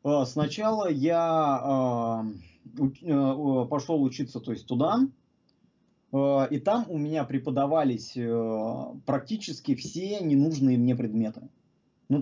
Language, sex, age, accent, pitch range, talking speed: Russian, male, 20-39, native, 125-175 Hz, 95 wpm